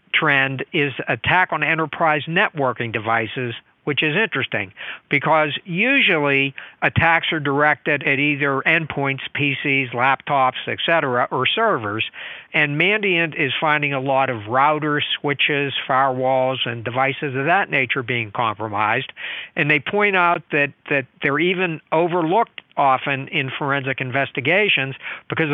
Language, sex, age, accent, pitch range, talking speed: English, male, 60-79, American, 130-155 Hz, 130 wpm